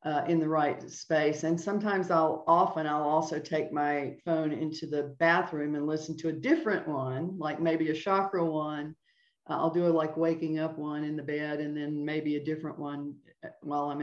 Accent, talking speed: American, 200 wpm